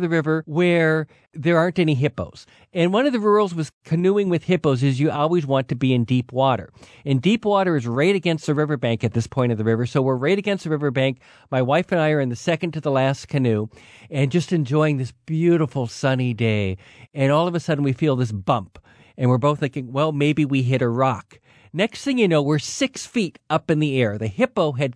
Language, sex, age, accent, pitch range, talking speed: English, male, 50-69, American, 130-175 Hz, 235 wpm